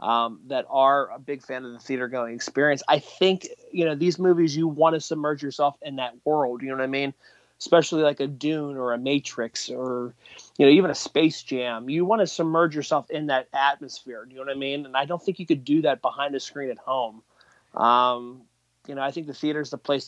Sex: male